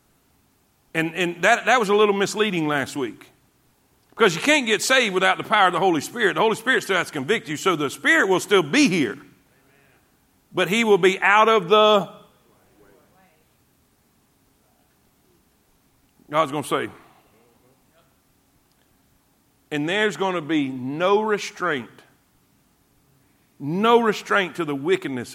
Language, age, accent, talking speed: English, 50-69, American, 140 wpm